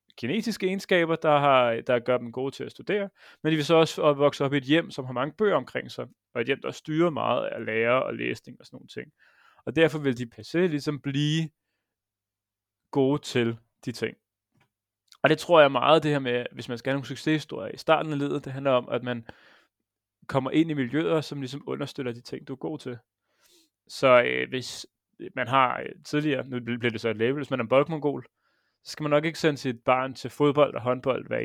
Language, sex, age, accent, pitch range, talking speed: Danish, male, 30-49, native, 115-150 Hz, 225 wpm